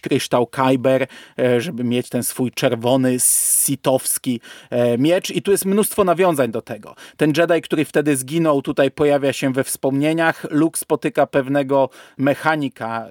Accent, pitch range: native, 125-150 Hz